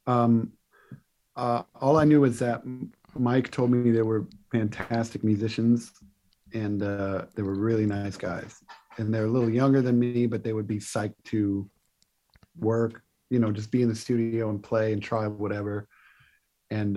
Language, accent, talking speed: English, American, 170 wpm